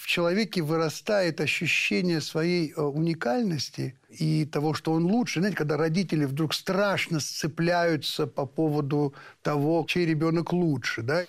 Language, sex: Russian, male